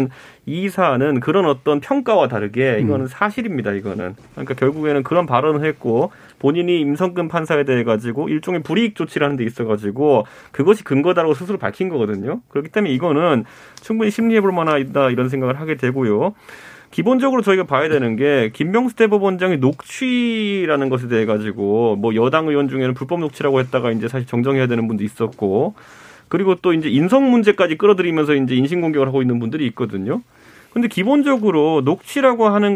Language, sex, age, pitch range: Korean, male, 30-49, 130-200 Hz